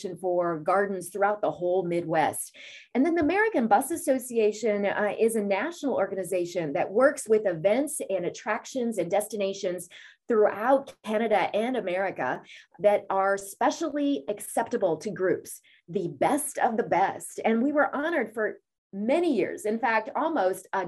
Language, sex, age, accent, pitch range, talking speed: English, female, 30-49, American, 195-265 Hz, 145 wpm